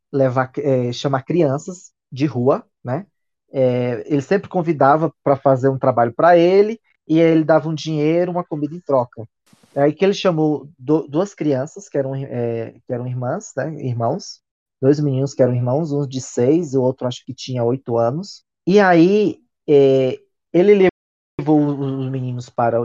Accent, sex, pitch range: Brazilian, male, 130-160 Hz